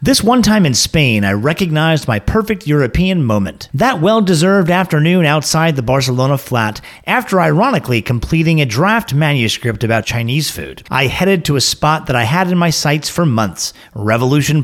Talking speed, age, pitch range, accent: 170 wpm, 40-59, 115-165 Hz, American